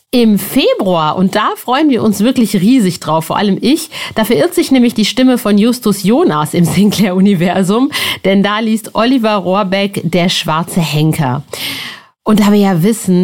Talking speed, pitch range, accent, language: 170 wpm, 175-225 Hz, German, German